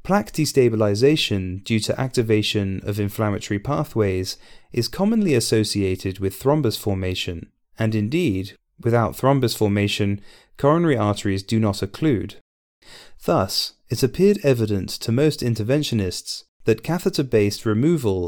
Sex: male